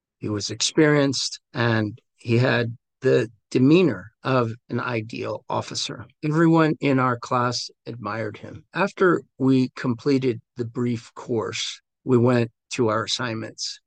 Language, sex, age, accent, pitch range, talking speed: English, male, 50-69, American, 110-135 Hz, 125 wpm